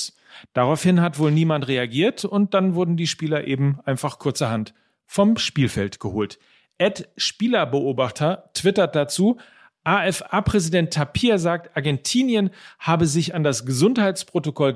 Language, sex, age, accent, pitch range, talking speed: German, male, 40-59, German, 135-185 Hz, 120 wpm